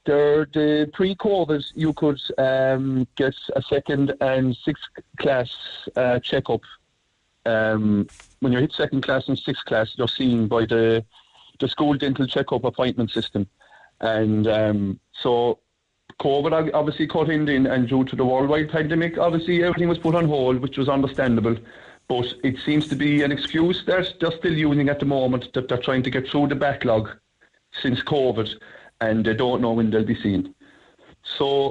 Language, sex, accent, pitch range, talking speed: English, male, British, 125-160 Hz, 165 wpm